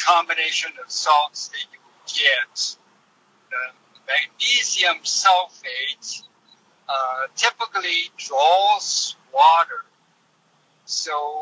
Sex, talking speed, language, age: male, 75 wpm, English, 60-79